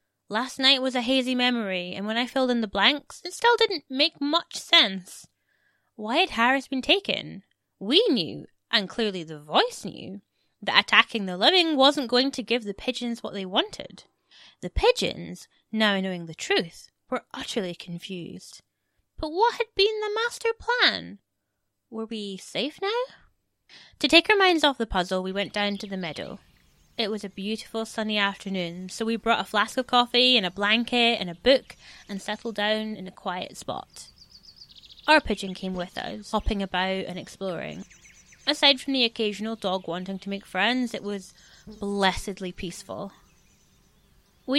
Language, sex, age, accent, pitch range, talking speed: English, female, 20-39, British, 195-270 Hz, 170 wpm